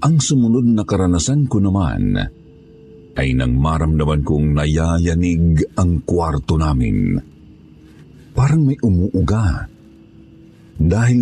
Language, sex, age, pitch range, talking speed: Filipino, male, 50-69, 75-100 Hz, 95 wpm